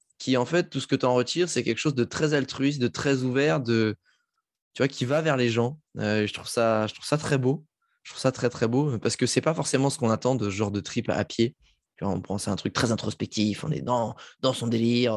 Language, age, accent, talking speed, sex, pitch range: French, 20-39, French, 275 wpm, male, 110-140 Hz